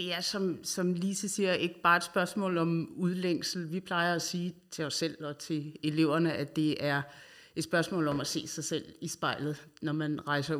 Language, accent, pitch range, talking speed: Danish, native, 145-170 Hz, 215 wpm